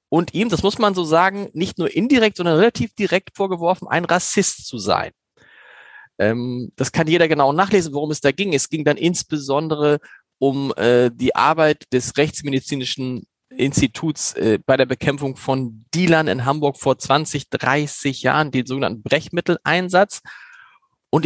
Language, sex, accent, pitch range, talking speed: German, male, German, 140-180 Hz, 155 wpm